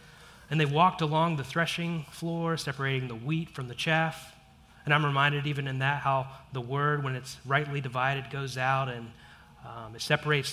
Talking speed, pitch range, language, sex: 180 wpm, 130-165 Hz, English, male